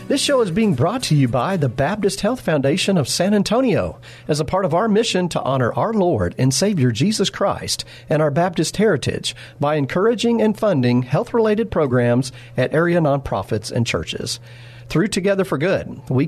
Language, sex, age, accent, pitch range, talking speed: English, male, 40-59, American, 125-175 Hz, 180 wpm